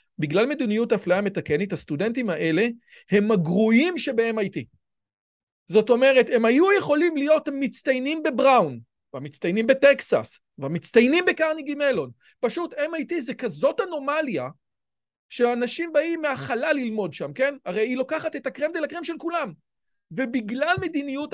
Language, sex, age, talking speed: Hebrew, male, 40-59, 120 wpm